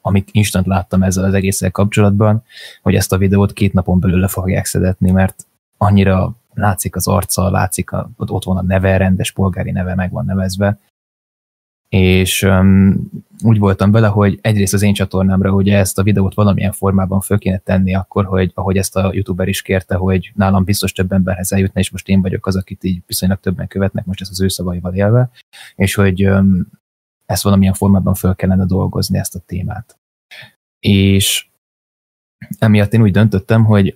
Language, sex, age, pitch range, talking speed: Hungarian, male, 20-39, 95-100 Hz, 175 wpm